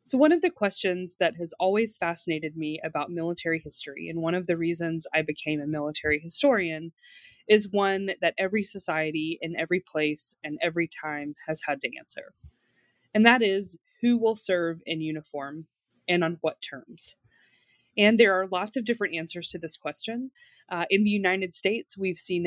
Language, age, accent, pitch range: English, 20-39, American, 155-190 Hz